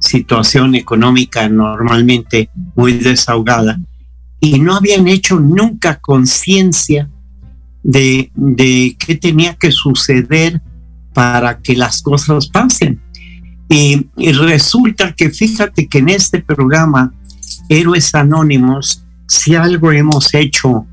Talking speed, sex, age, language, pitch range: 105 wpm, male, 50-69, Spanish, 120-160 Hz